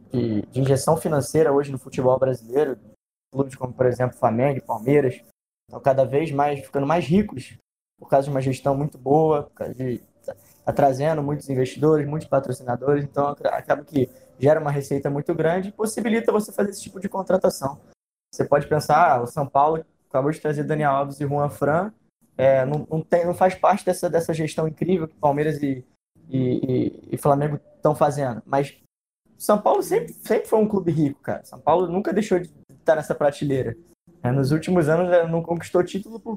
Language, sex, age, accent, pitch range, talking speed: Portuguese, male, 20-39, Brazilian, 140-175 Hz, 185 wpm